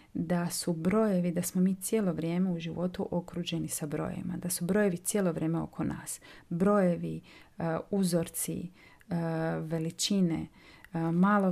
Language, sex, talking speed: Croatian, female, 125 wpm